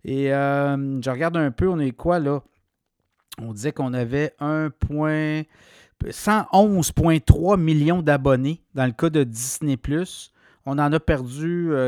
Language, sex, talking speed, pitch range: French, male, 135 wpm, 140-170 Hz